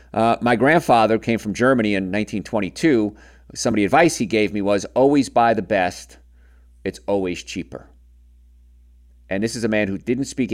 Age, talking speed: 50-69, 175 wpm